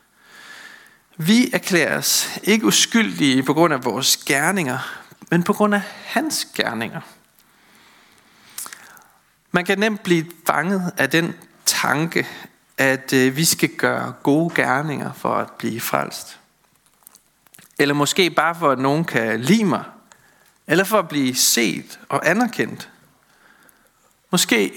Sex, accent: male, native